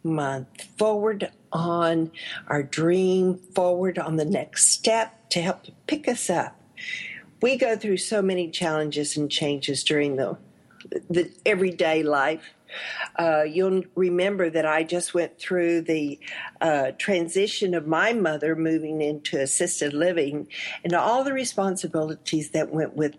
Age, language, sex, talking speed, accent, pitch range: 50-69, English, female, 135 wpm, American, 155-215 Hz